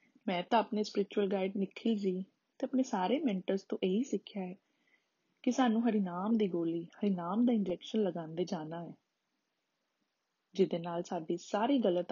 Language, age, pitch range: Punjabi, 20-39, 180-235 Hz